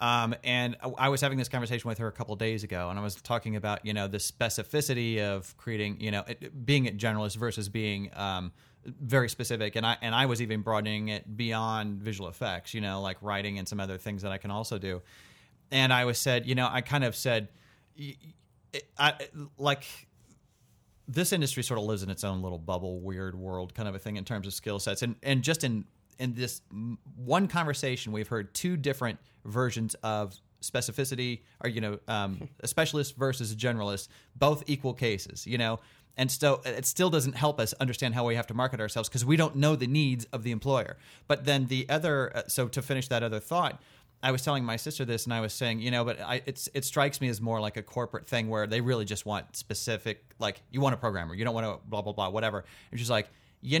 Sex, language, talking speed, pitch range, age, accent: male, English, 230 wpm, 105-130 Hz, 30-49, American